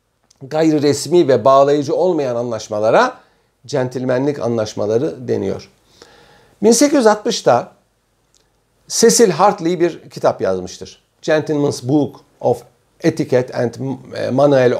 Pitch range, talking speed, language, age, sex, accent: 125-180 Hz, 85 wpm, Turkish, 50-69, male, native